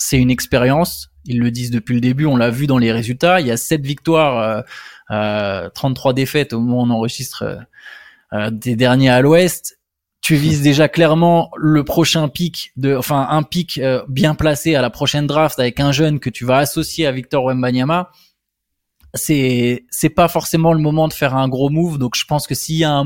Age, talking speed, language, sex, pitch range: 20-39, 210 wpm, French, male, 130-165 Hz